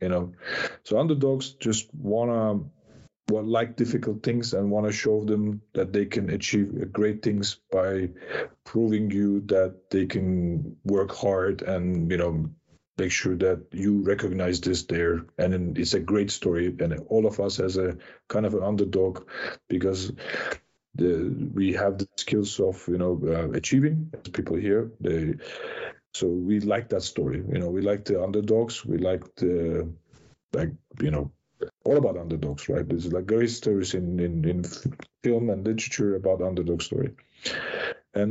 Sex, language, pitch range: male, English, 90-115 Hz